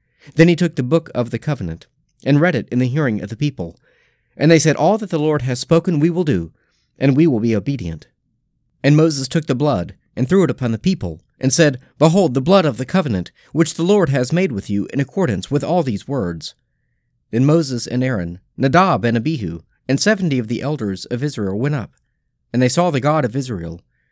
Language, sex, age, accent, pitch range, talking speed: English, male, 40-59, American, 115-160 Hz, 220 wpm